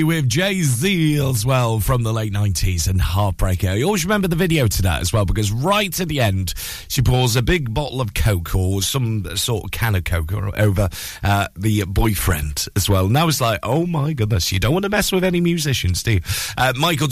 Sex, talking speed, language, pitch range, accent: male, 215 wpm, English, 100-145 Hz, British